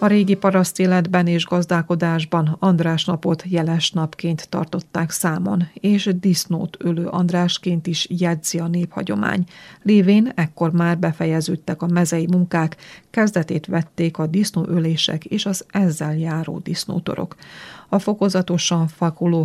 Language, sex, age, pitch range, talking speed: Hungarian, female, 30-49, 165-180 Hz, 120 wpm